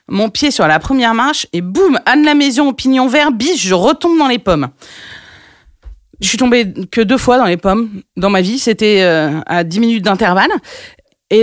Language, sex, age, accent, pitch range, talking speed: French, female, 30-49, French, 185-255 Hz, 200 wpm